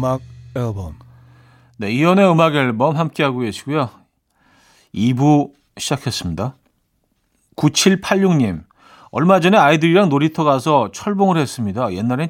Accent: native